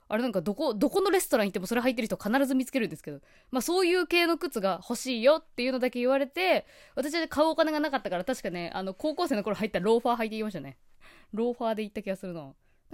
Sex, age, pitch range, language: female, 20-39, 180-285 Hz, Japanese